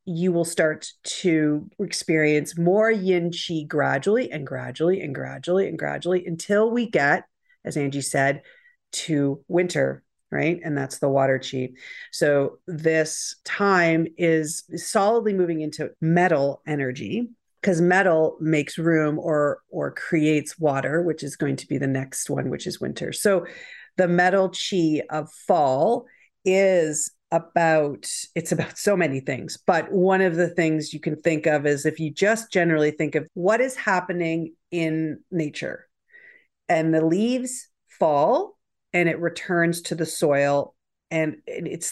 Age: 50-69